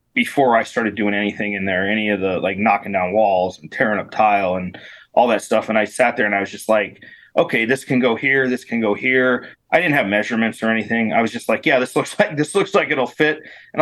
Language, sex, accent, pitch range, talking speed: English, male, American, 100-135 Hz, 260 wpm